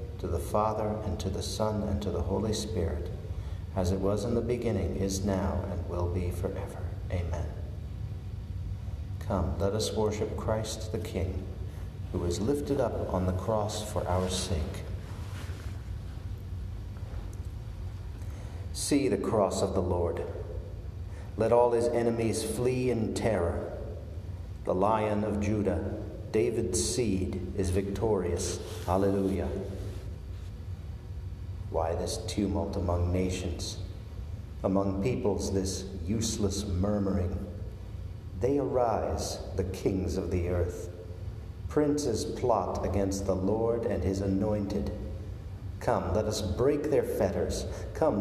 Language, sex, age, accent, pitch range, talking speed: English, male, 50-69, American, 95-105 Hz, 120 wpm